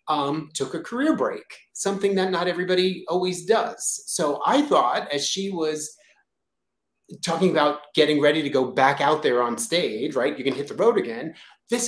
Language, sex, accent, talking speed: English, male, American, 180 wpm